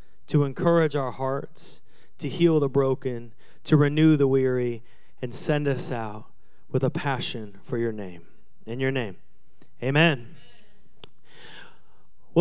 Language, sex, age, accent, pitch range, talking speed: English, male, 30-49, American, 155-185 Hz, 130 wpm